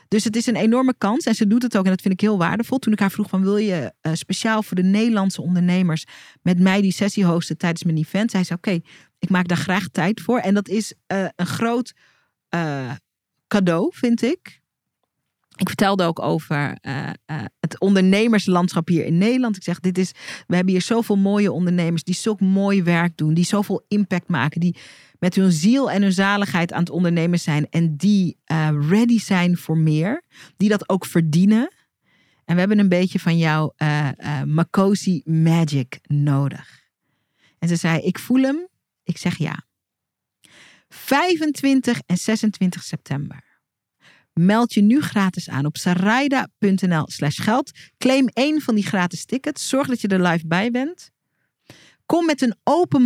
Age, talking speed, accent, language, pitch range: 40-59, 175 wpm, Dutch, Dutch, 170-215 Hz